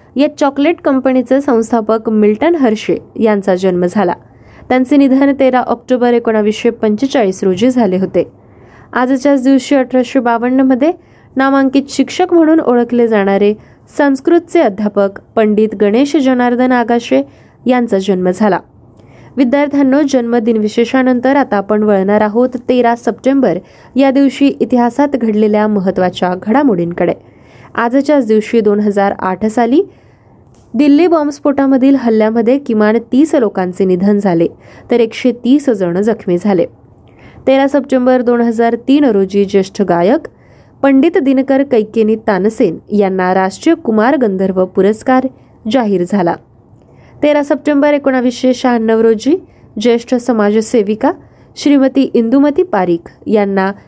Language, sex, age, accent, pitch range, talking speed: Marathi, female, 20-39, native, 205-270 Hz, 105 wpm